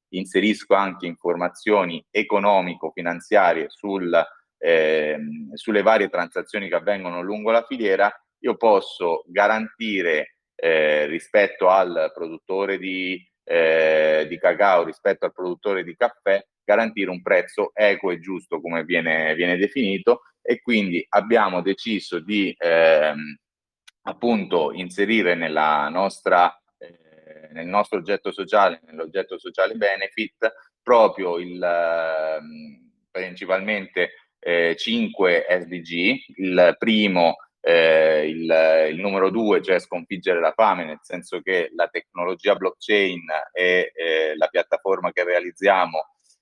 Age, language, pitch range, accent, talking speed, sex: 30-49, Italian, 85-105 Hz, native, 110 wpm, male